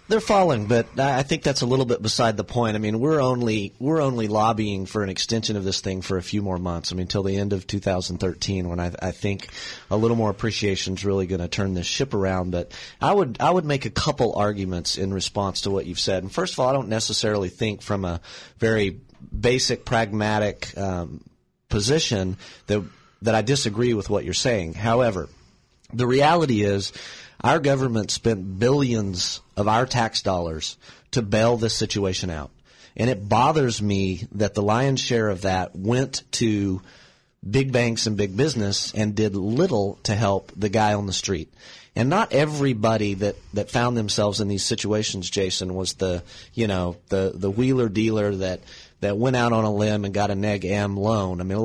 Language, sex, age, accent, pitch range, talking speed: English, male, 30-49, American, 95-115 Hz, 200 wpm